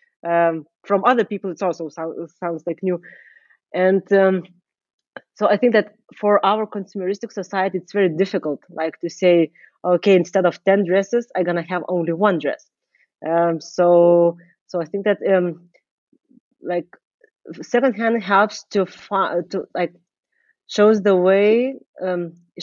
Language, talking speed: German, 150 wpm